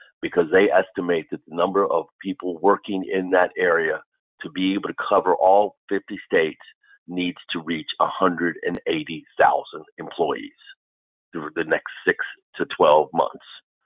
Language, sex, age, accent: English, male, 50-69, American